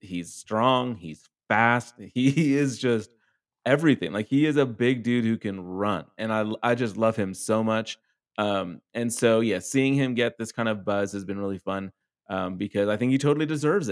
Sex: male